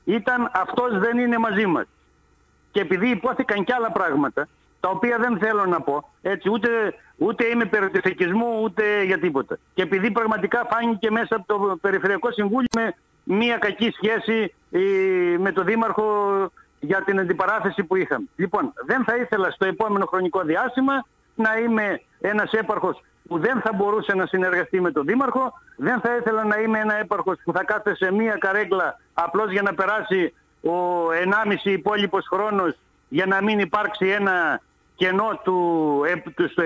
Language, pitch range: Greek, 195-235 Hz